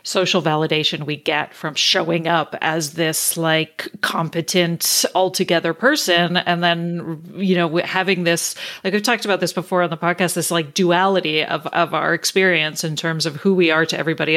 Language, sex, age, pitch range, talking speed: English, female, 40-59, 165-220 Hz, 180 wpm